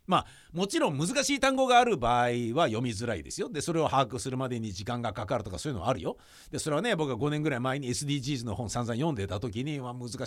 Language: Japanese